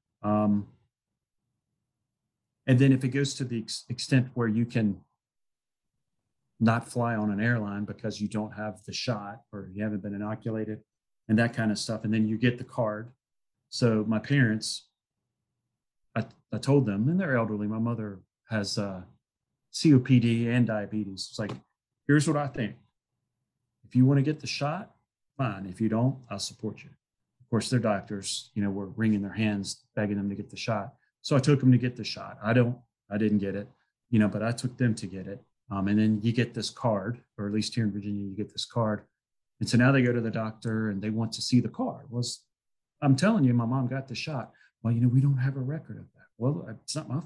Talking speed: 215 wpm